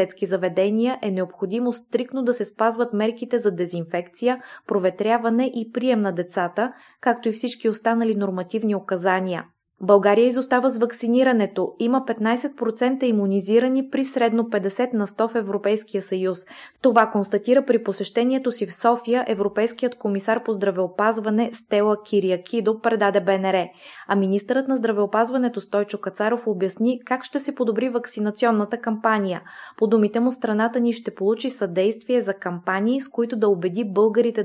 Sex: female